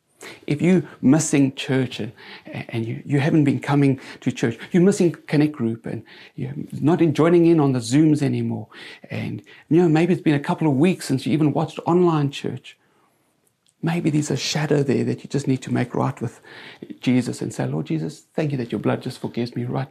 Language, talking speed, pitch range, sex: English, 200 wpm, 125-155 Hz, male